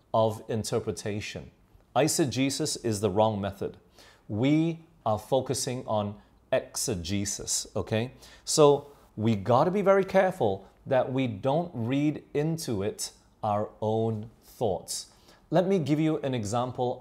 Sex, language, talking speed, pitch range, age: male, English, 120 wpm, 105-150 Hz, 30-49